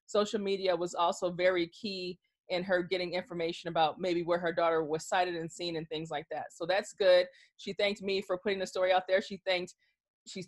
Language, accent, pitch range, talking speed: English, American, 170-200 Hz, 220 wpm